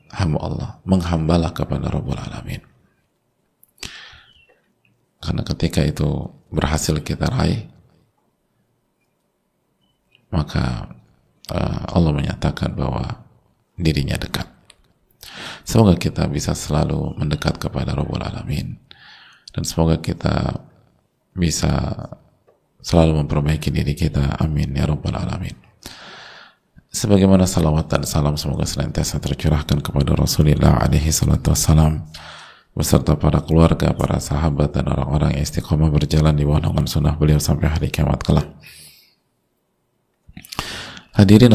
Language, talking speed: Indonesian, 95 wpm